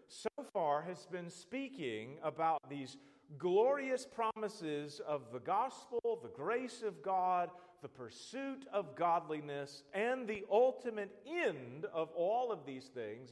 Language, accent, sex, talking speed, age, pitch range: English, American, male, 130 wpm, 40-59, 155-225 Hz